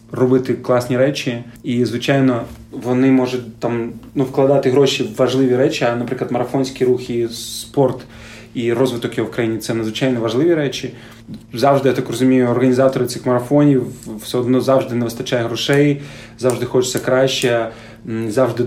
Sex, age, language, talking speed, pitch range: male, 30-49, Ukrainian, 140 wpm, 115-130 Hz